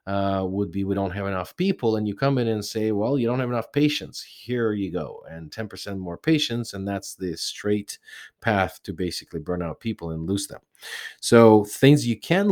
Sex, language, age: male, English, 30-49